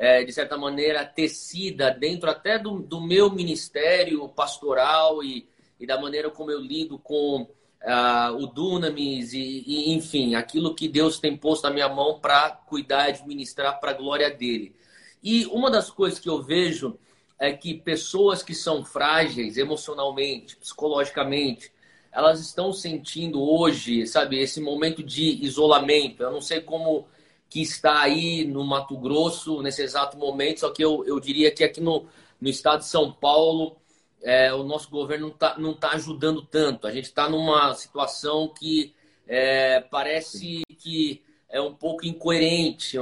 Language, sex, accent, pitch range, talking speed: Portuguese, male, Brazilian, 140-160 Hz, 160 wpm